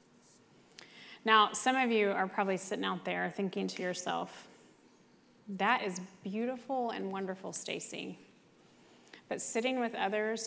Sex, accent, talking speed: female, American, 125 wpm